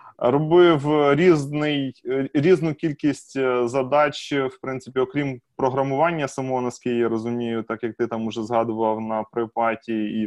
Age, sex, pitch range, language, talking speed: 20-39, male, 115-145 Hz, Ukrainian, 130 wpm